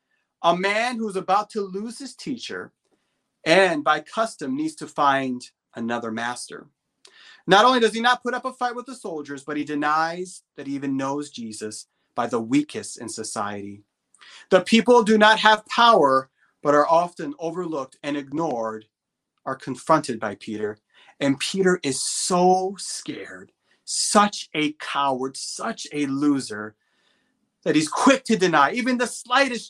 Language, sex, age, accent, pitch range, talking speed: English, male, 30-49, American, 135-205 Hz, 155 wpm